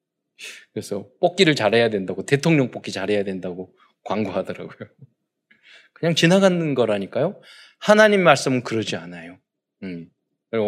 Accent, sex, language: native, male, Korean